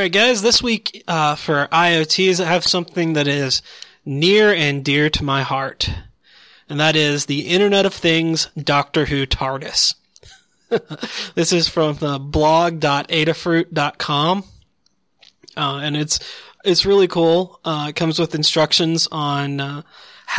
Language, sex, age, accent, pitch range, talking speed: English, male, 20-39, American, 145-180 Hz, 140 wpm